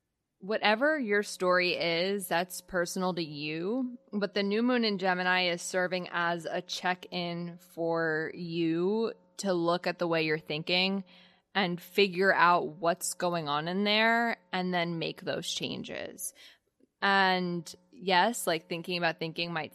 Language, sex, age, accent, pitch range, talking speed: English, female, 20-39, American, 165-205 Hz, 150 wpm